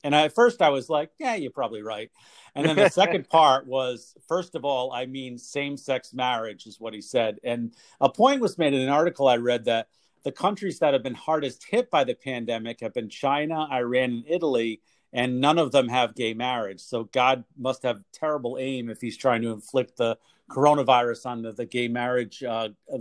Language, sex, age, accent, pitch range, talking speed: English, male, 50-69, American, 115-140 Hz, 210 wpm